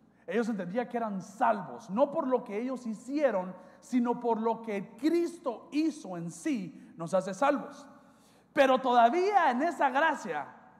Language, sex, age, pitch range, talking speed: Spanish, male, 40-59, 230-300 Hz, 150 wpm